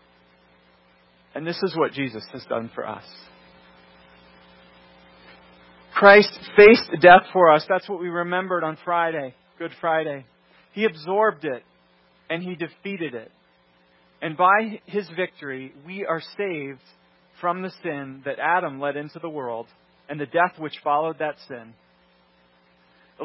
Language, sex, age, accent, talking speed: English, male, 40-59, American, 135 wpm